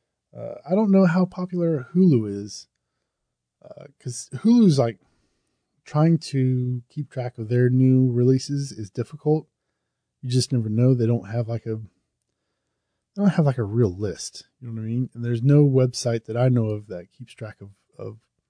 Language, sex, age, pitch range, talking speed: English, male, 20-39, 120-145 Hz, 180 wpm